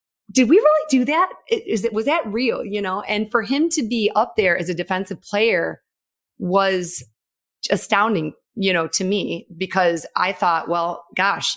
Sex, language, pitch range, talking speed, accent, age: female, English, 170-210 Hz, 175 wpm, American, 30-49